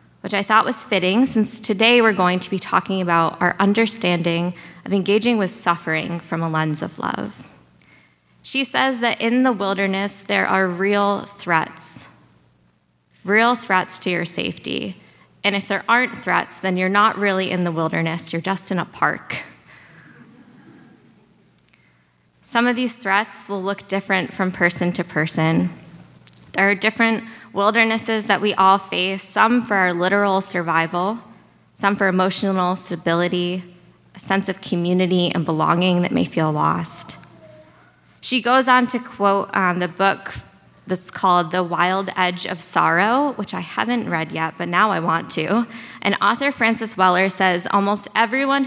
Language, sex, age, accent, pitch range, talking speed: English, female, 20-39, American, 175-210 Hz, 155 wpm